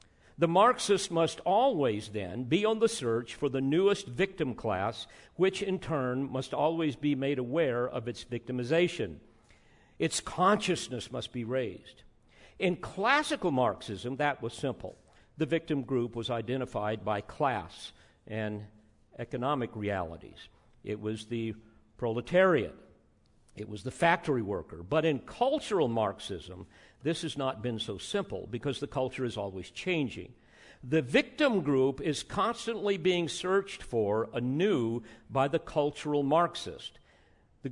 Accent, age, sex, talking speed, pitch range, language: American, 50-69, male, 135 wpm, 115-165 Hz, English